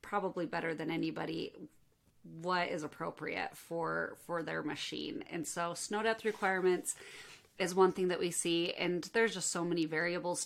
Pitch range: 165-190 Hz